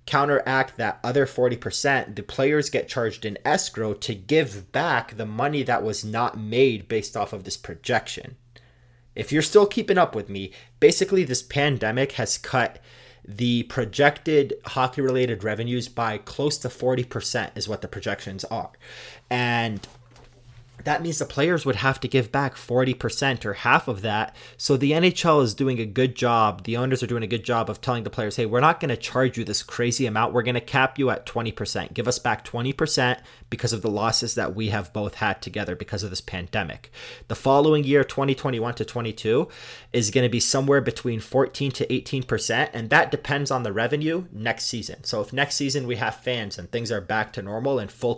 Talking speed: 195 wpm